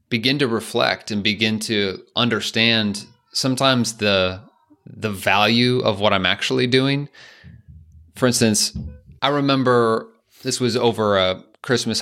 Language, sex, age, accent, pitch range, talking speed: English, male, 30-49, American, 95-115 Hz, 125 wpm